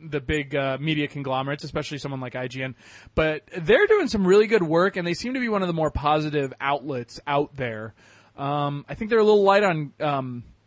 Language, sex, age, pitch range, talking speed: English, male, 20-39, 120-155 Hz, 215 wpm